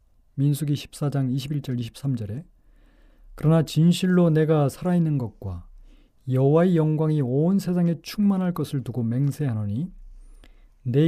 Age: 40-59